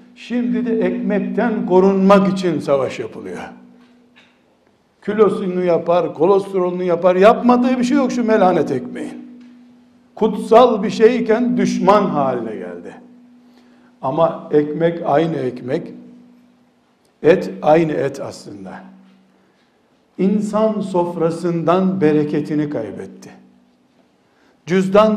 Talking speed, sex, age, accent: 90 wpm, male, 60-79, native